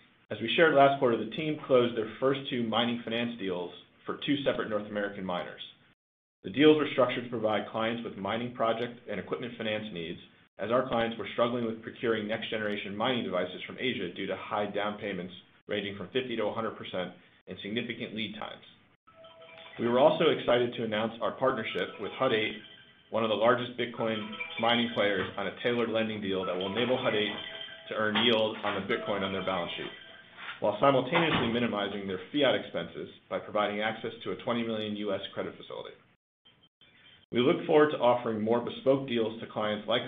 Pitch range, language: 100-125 Hz, English